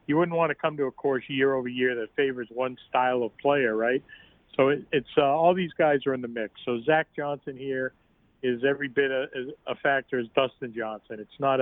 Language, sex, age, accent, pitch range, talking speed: English, male, 40-59, American, 125-145 Hz, 225 wpm